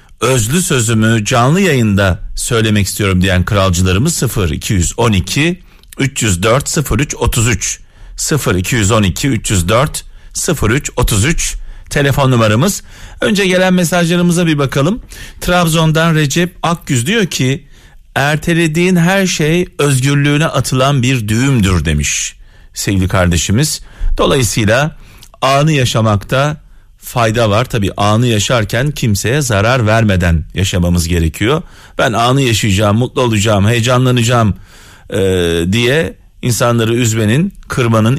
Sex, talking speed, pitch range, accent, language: male, 95 wpm, 100-150 Hz, native, Turkish